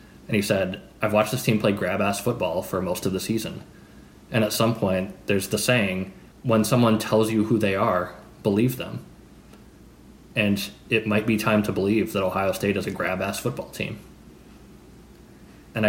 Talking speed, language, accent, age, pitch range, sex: 180 wpm, English, American, 20-39, 100-120 Hz, male